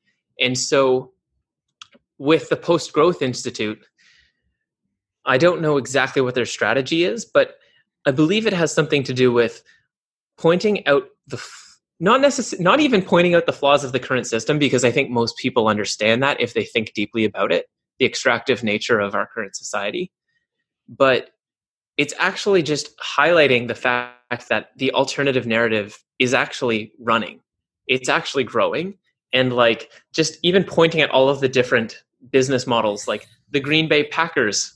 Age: 20-39